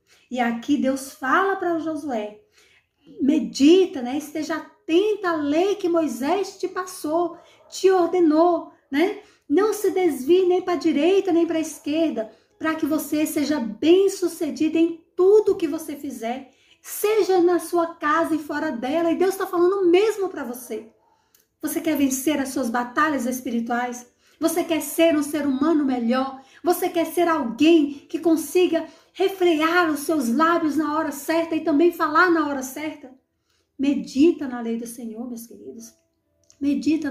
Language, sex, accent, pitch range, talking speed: Portuguese, female, Brazilian, 265-335 Hz, 155 wpm